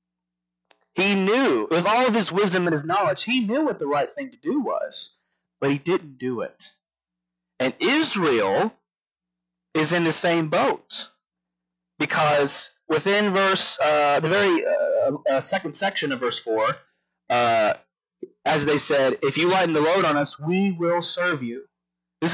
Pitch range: 135-205 Hz